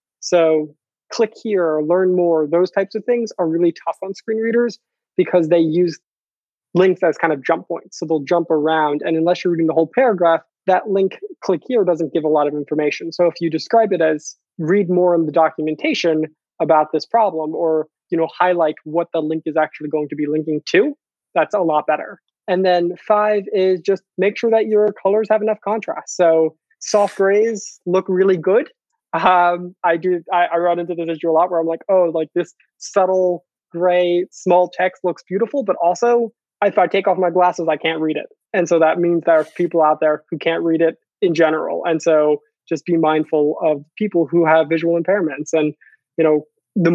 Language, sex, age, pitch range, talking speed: English, male, 20-39, 160-190 Hz, 205 wpm